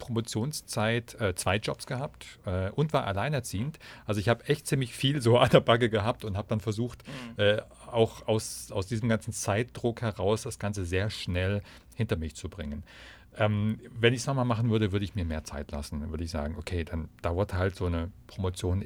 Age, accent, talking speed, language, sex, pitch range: 40-59, German, 200 wpm, German, male, 95-120 Hz